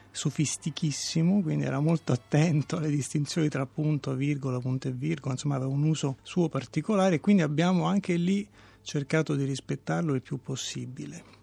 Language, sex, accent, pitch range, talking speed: Italian, male, native, 135-165 Hz, 150 wpm